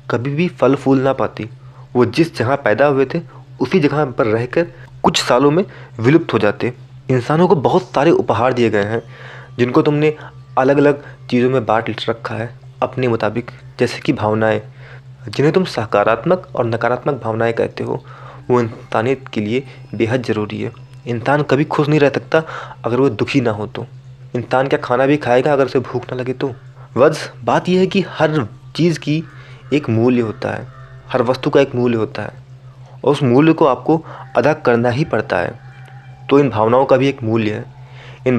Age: 30-49